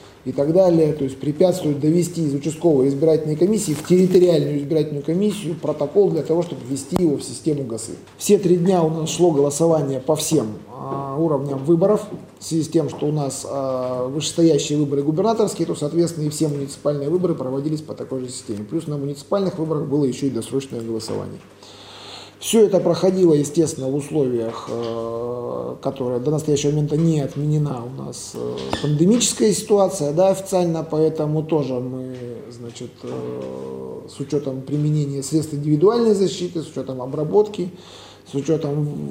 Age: 20-39